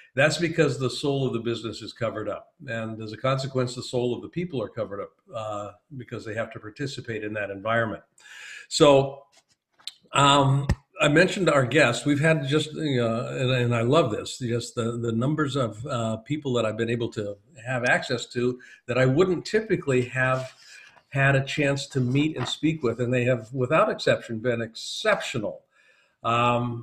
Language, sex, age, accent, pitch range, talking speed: English, male, 50-69, American, 120-145 Hz, 180 wpm